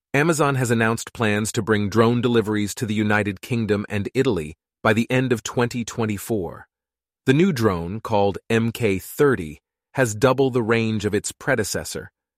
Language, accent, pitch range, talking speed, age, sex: English, American, 105-130 Hz, 150 wpm, 30-49, male